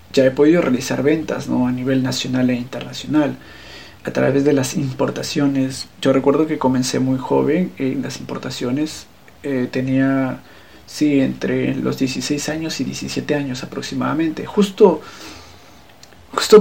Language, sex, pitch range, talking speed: Spanish, male, 110-140 Hz, 135 wpm